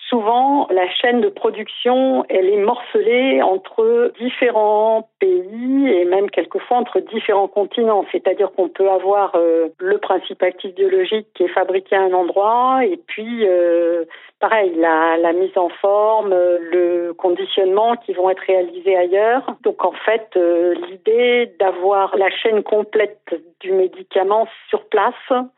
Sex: female